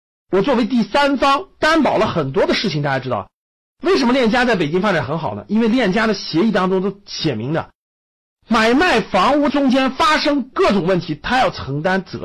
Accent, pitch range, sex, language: native, 165-245 Hz, male, Chinese